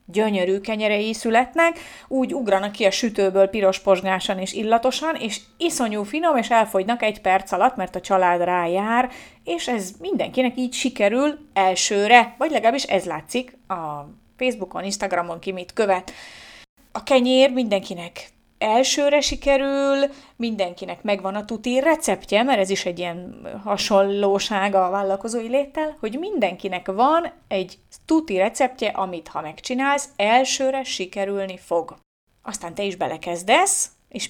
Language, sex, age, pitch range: Hungarian, female, 30-49, 195-260 Hz